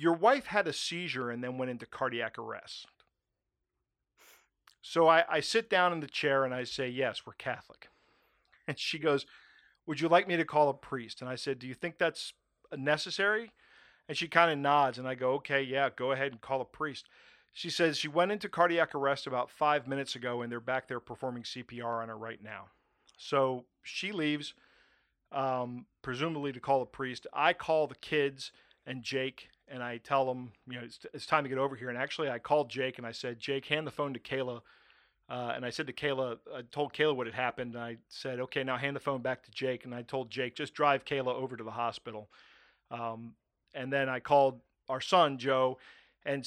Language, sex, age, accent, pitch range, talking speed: English, male, 40-59, American, 125-150 Hz, 215 wpm